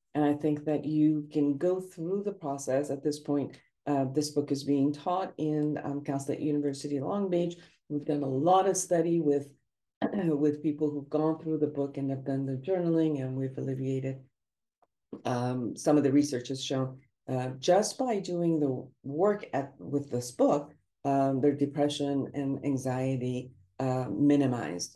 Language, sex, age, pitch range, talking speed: English, female, 50-69, 130-155 Hz, 175 wpm